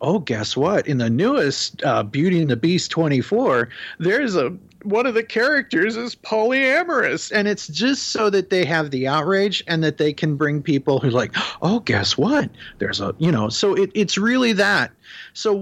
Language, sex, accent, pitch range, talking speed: English, male, American, 135-185 Hz, 200 wpm